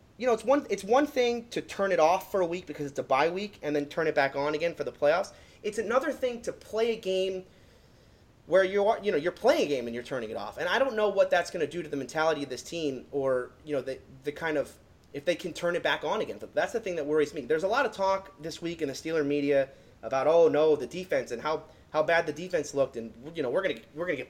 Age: 30-49